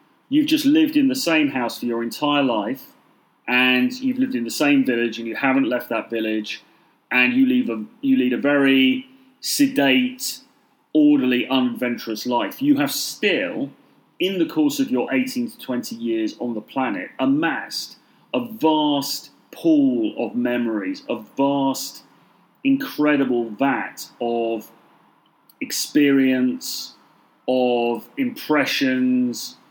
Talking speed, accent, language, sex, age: 125 wpm, British, English, male, 30-49